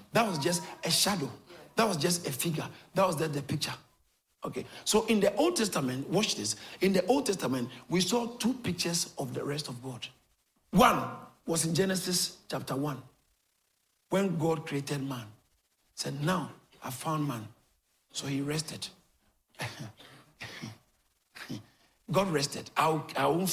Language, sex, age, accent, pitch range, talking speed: English, male, 50-69, Nigerian, 125-160 Hz, 150 wpm